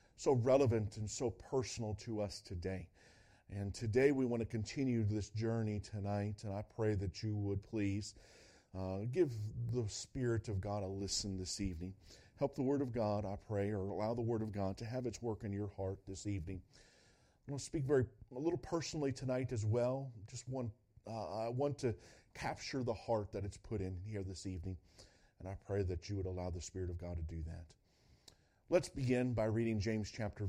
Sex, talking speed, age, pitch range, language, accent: male, 205 wpm, 40-59, 95-120 Hz, English, American